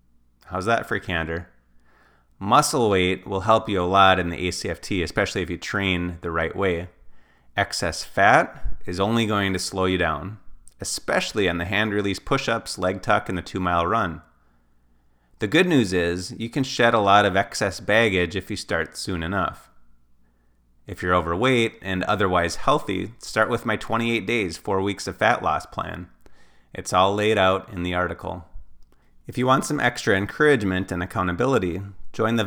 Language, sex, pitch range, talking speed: English, male, 80-105 Hz, 170 wpm